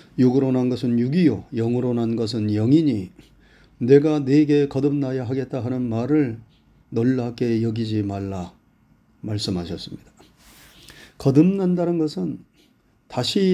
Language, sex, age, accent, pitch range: Korean, male, 40-59, native, 115-155 Hz